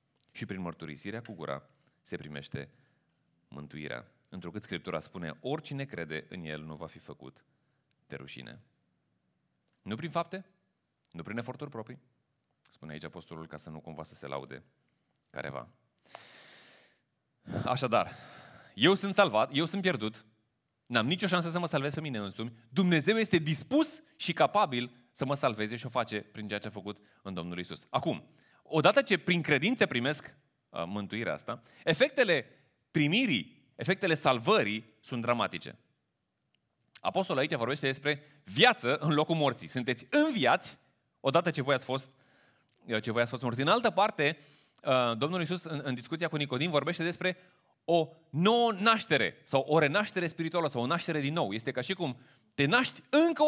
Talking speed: 155 wpm